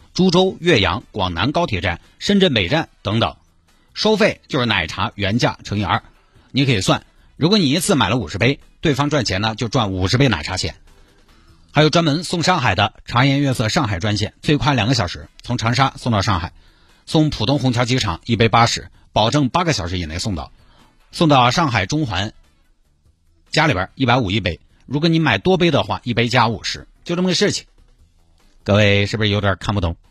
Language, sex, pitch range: Chinese, male, 95-135 Hz